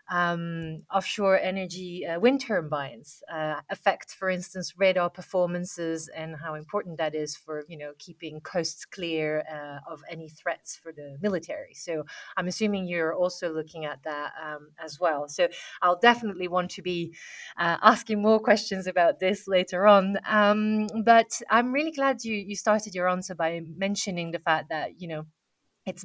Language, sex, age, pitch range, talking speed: English, female, 30-49, 165-205 Hz, 170 wpm